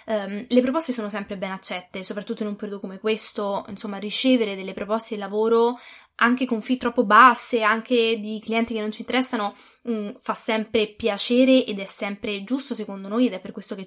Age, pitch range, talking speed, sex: 20-39, 205-240 Hz, 190 wpm, female